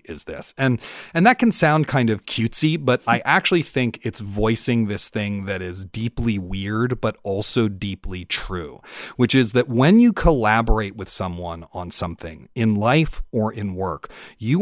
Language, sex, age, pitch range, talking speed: English, male, 40-59, 100-130 Hz, 170 wpm